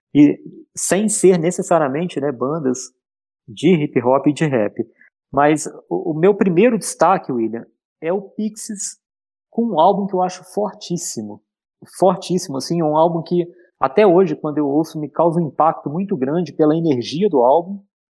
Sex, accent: male, Brazilian